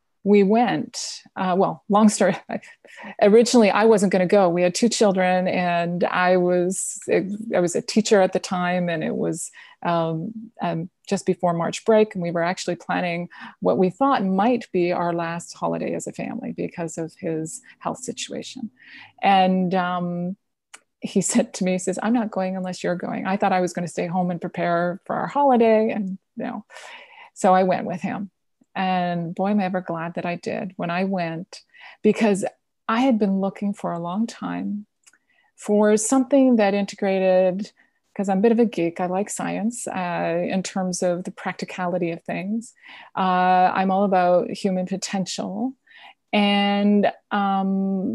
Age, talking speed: 30-49, 175 wpm